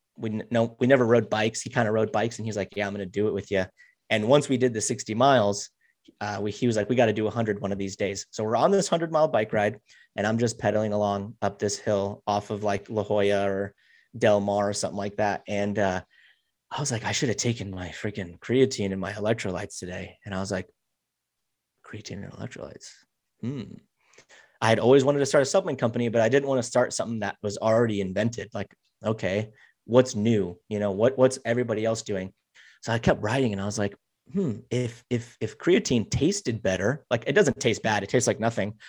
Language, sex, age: English, male, 30-49